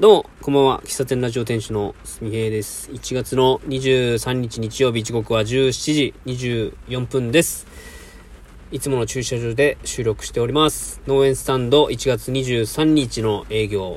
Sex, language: male, Japanese